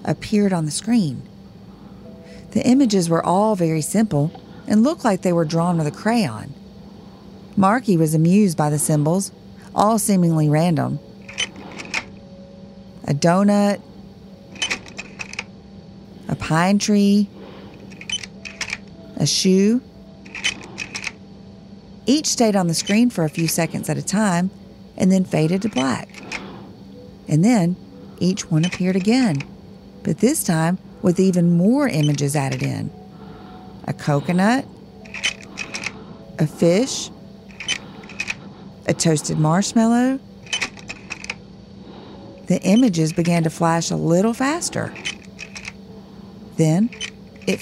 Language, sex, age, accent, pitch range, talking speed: English, female, 40-59, American, 165-210 Hz, 105 wpm